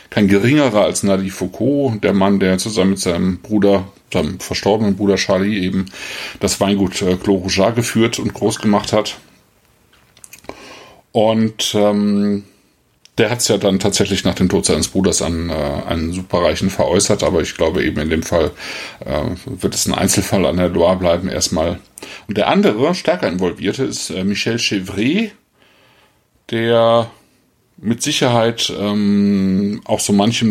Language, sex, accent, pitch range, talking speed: German, male, German, 95-110 Hz, 150 wpm